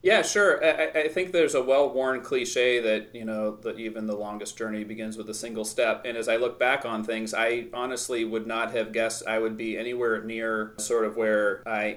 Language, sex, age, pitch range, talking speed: English, male, 30-49, 110-130 Hz, 220 wpm